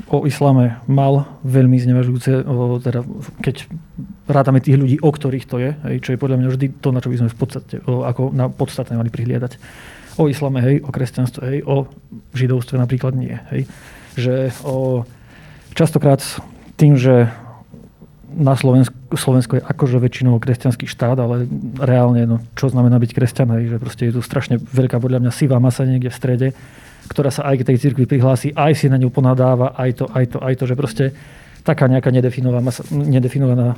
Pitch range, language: 125-140 Hz, Slovak